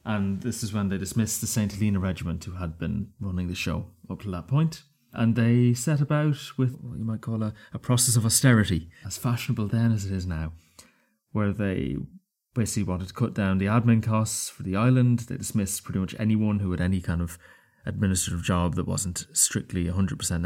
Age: 30-49